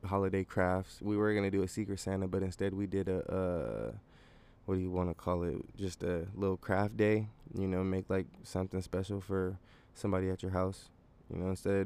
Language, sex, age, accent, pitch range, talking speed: English, male, 20-39, American, 90-100 Hz, 220 wpm